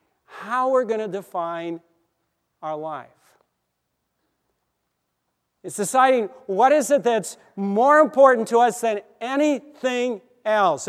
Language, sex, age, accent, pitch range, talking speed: English, male, 50-69, American, 180-230 Hz, 110 wpm